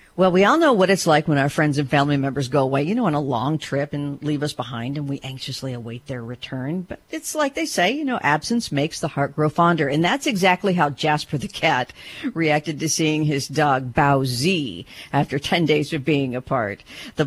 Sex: female